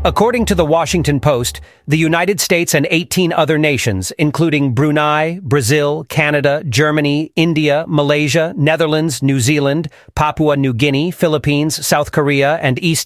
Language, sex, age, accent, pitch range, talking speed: English, male, 40-59, American, 140-170 Hz, 140 wpm